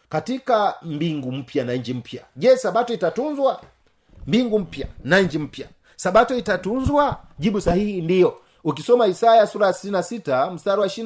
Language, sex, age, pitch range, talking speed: Swahili, male, 40-59, 160-225 Hz, 150 wpm